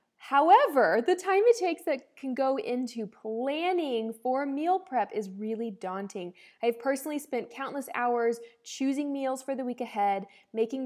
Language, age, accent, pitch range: English, 20-39, American, 215-275 Hz